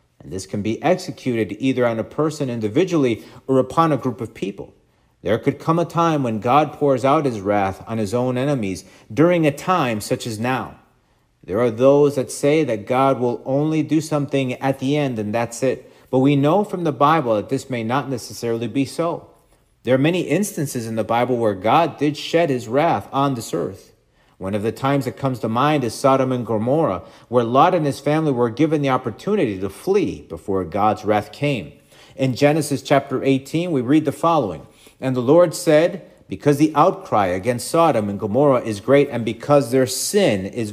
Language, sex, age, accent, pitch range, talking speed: English, male, 40-59, American, 115-145 Hz, 200 wpm